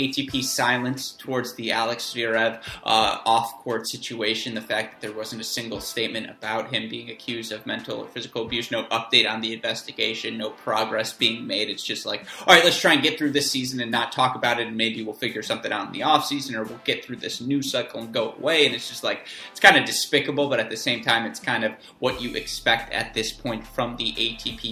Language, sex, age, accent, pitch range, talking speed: English, male, 20-39, American, 115-140 Hz, 235 wpm